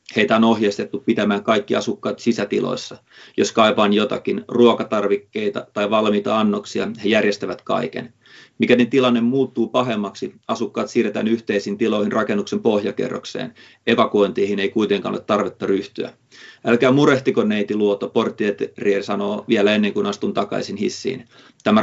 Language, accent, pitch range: Finnish, native, 100-115 Hz